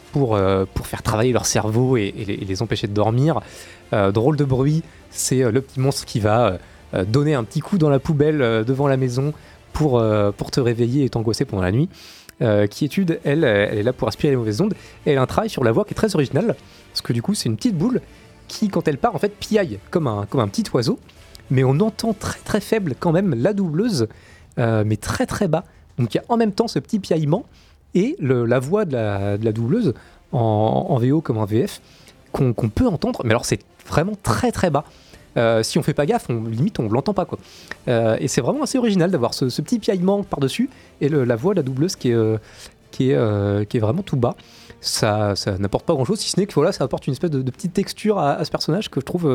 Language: French